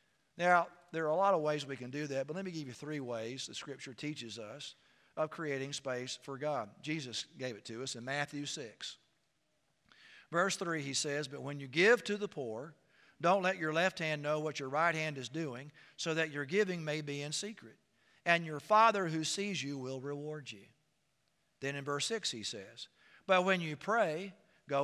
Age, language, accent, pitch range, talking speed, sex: 50-69, English, American, 140-175 Hz, 210 wpm, male